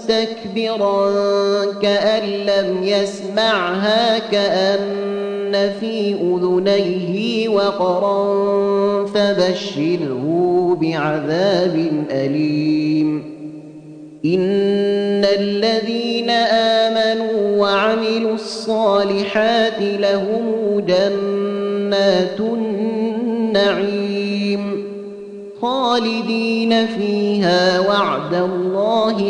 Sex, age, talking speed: male, 30-49, 45 wpm